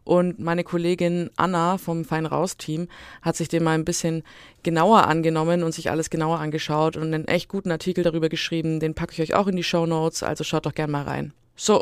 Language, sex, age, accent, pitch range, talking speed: German, female, 20-39, German, 160-200 Hz, 215 wpm